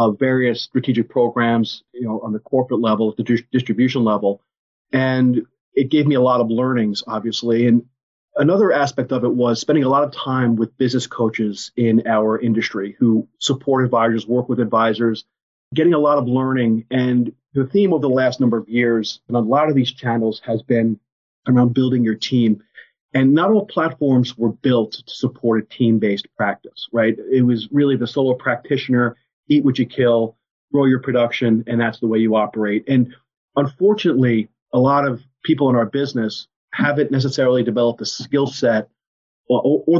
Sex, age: male, 40-59